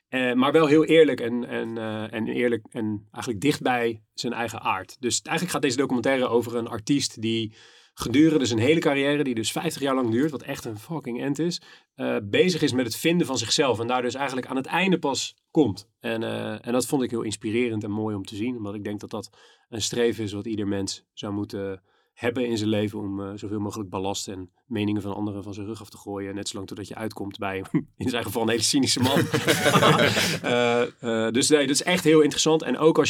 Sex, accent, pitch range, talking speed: male, Dutch, 110-135 Hz, 230 wpm